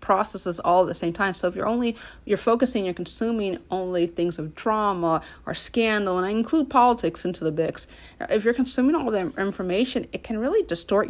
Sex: female